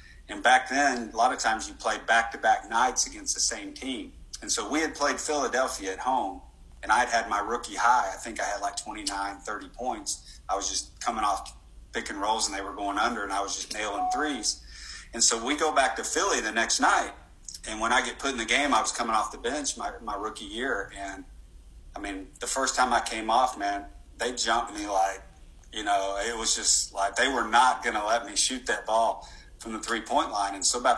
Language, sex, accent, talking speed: English, male, American, 235 wpm